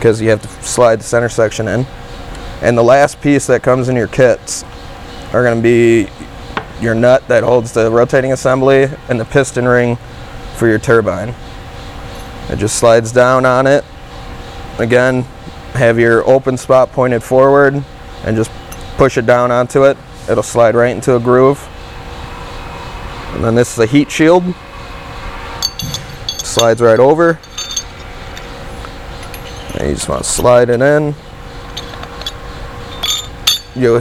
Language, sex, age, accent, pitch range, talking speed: English, male, 20-39, American, 115-135 Hz, 140 wpm